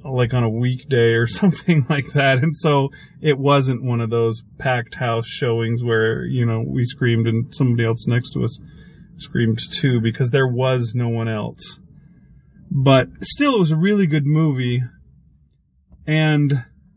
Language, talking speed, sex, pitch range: English, 165 wpm, male, 120-145 Hz